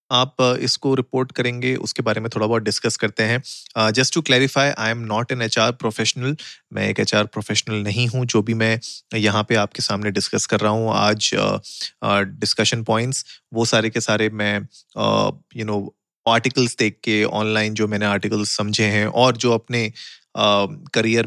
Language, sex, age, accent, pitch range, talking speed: Hindi, male, 30-49, native, 105-125 Hz, 180 wpm